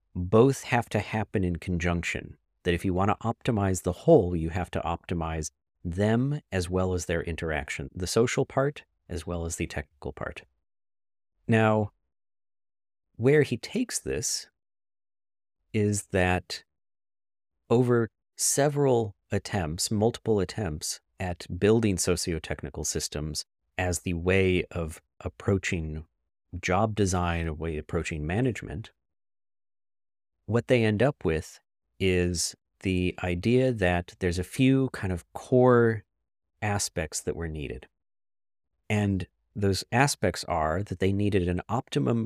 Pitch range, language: 85-105 Hz, English